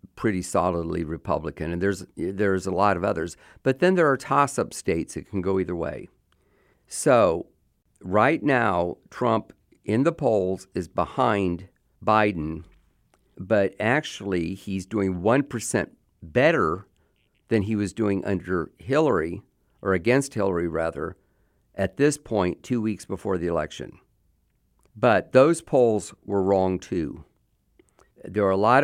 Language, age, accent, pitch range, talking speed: English, 50-69, American, 90-120 Hz, 135 wpm